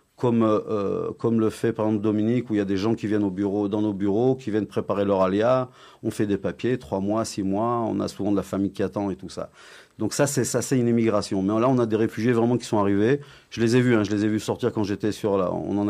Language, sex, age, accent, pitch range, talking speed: French, male, 40-59, French, 100-120 Hz, 295 wpm